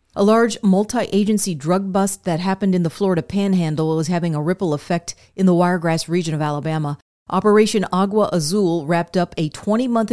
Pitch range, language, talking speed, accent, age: 165-195 Hz, English, 170 wpm, American, 40-59